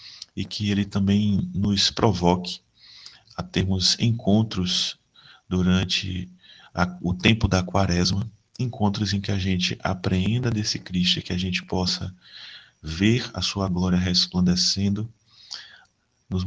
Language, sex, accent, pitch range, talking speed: Portuguese, male, Brazilian, 90-105 Hz, 120 wpm